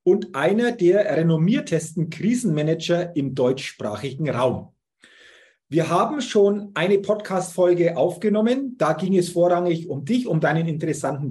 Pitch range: 160-205 Hz